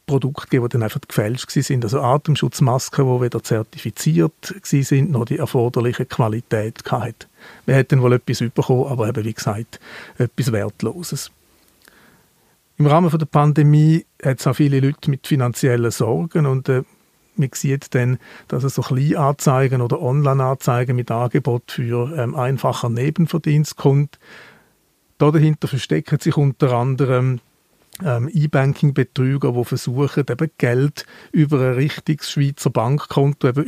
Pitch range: 120-145 Hz